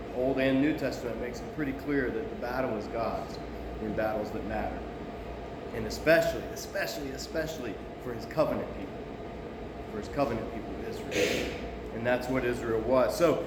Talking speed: 165 wpm